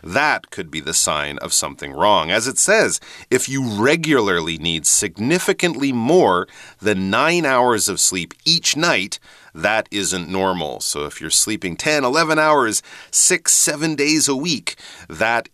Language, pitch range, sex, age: Chinese, 90-145 Hz, male, 40-59